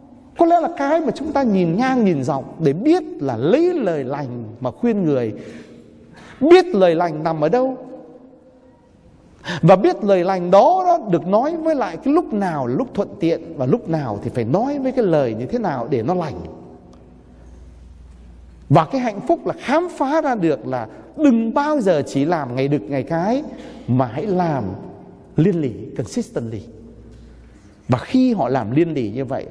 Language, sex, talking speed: Vietnamese, male, 185 wpm